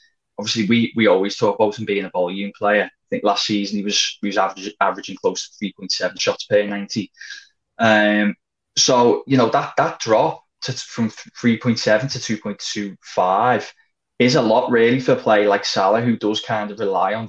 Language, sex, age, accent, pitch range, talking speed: English, male, 20-39, British, 105-120 Hz, 185 wpm